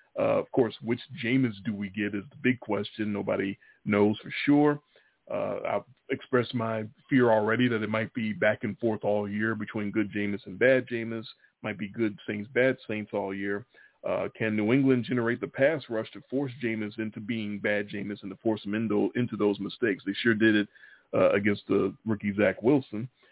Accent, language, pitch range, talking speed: American, English, 105-125 Hz, 200 wpm